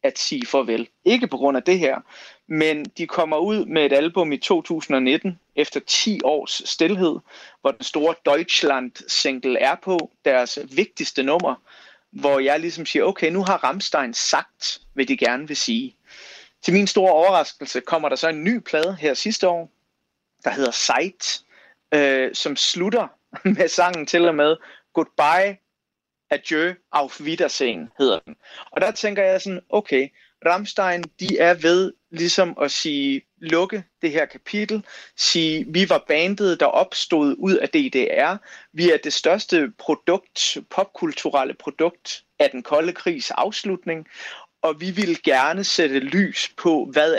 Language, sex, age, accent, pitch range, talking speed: Danish, male, 30-49, native, 150-195 Hz, 155 wpm